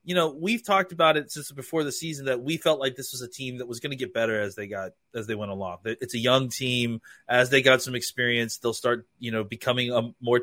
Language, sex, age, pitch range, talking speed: English, male, 30-49, 120-145 Hz, 270 wpm